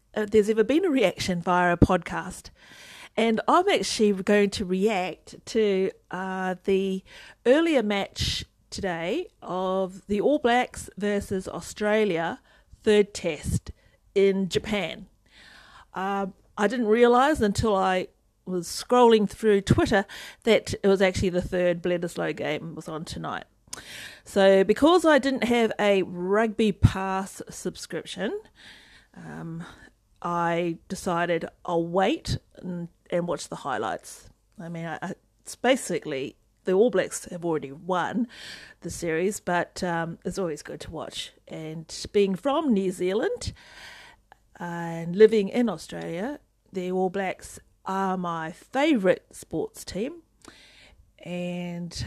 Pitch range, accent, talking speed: 175-220 Hz, Australian, 125 wpm